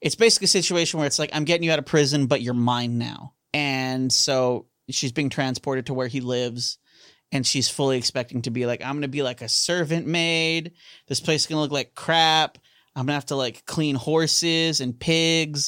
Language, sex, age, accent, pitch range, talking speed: English, male, 30-49, American, 125-155 Hz, 225 wpm